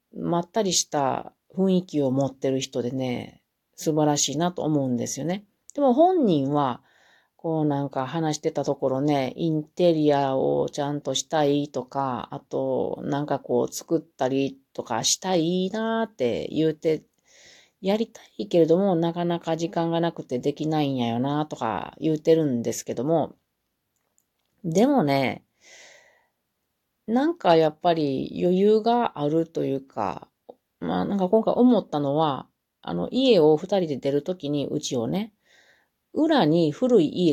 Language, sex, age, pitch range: Japanese, female, 40-59, 135-185 Hz